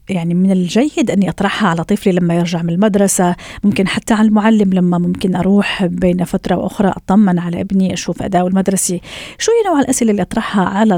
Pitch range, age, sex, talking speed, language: 190-255 Hz, 40-59, female, 185 wpm, Arabic